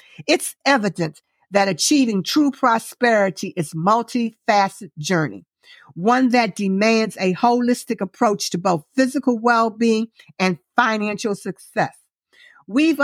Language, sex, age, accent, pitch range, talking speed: English, female, 50-69, American, 185-240 Hz, 115 wpm